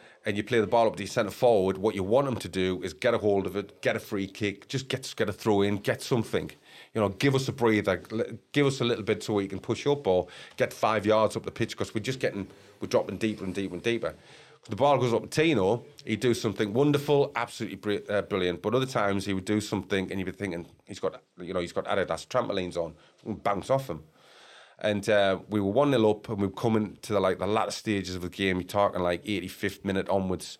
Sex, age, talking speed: male, 30-49, 255 wpm